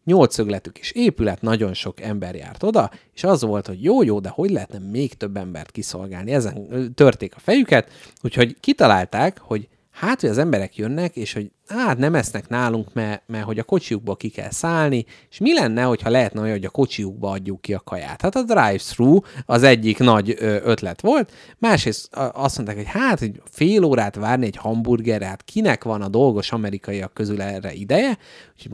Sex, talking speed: male, 185 wpm